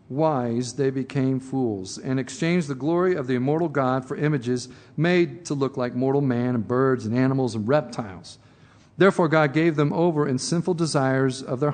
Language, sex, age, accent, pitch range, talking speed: English, male, 50-69, American, 125-150 Hz, 185 wpm